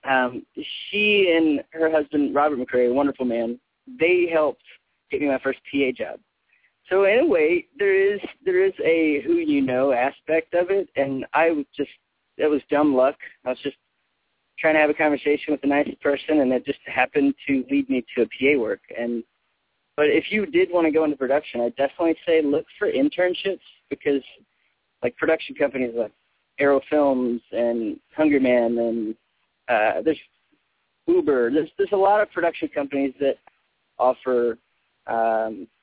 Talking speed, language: 170 wpm, English